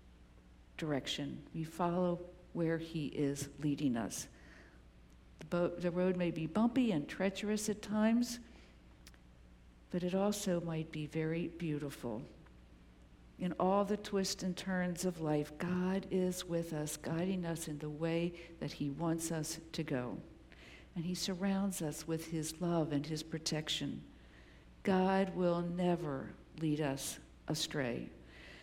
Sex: female